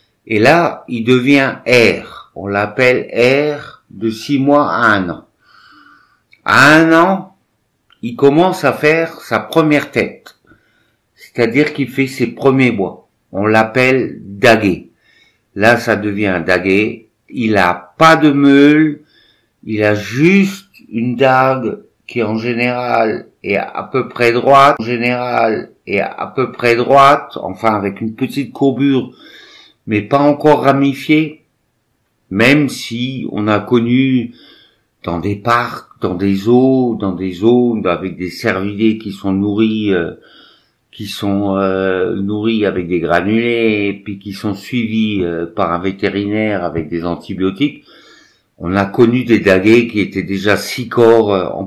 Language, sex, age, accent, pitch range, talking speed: French, male, 60-79, French, 100-130 Hz, 140 wpm